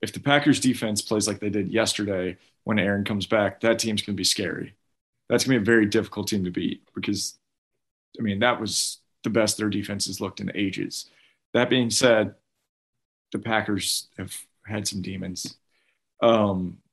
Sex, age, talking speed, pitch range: male, 20-39, 185 wpm, 100-120 Hz